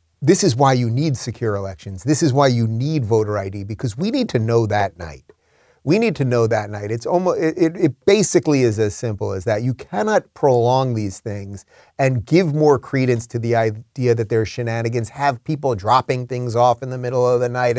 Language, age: English, 30-49